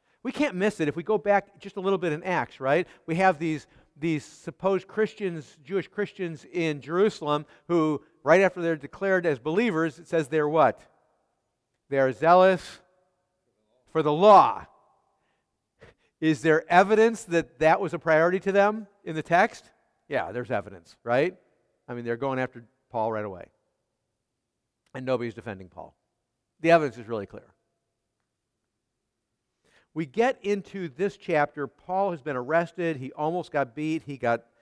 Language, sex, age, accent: English, male, 50-69, American